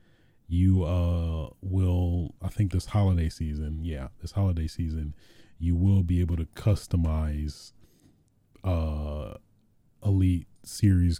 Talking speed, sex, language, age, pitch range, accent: 115 wpm, male, English, 30-49, 80-95 Hz, American